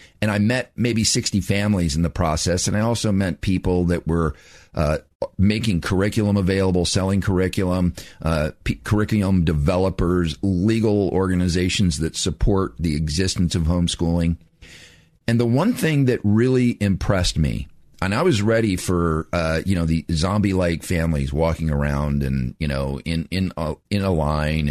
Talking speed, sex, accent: 160 wpm, male, American